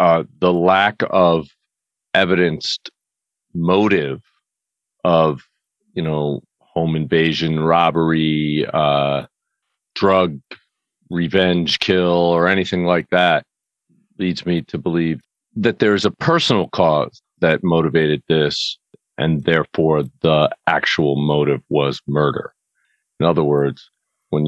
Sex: male